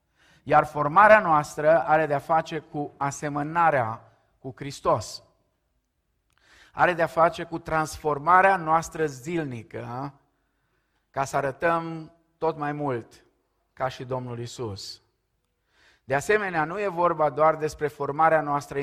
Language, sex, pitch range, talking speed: Romanian, male, 130-160 Hz, 115 wpm